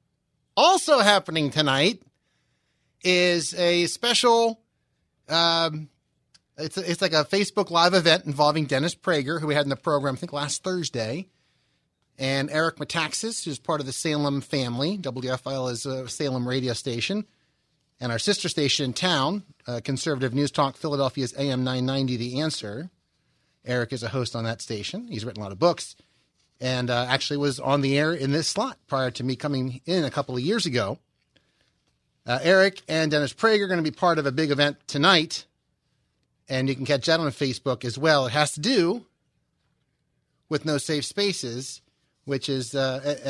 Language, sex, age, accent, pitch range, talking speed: English, male, 30-49, American, 130-165 Hz, 175 wpm